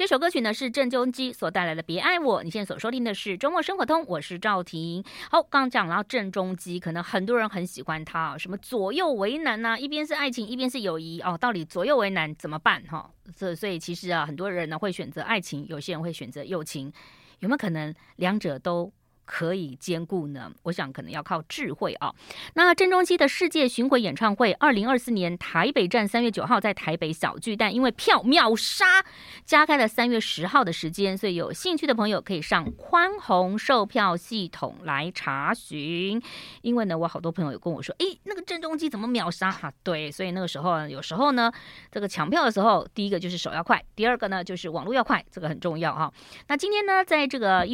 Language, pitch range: Chinese, 170-250 Hz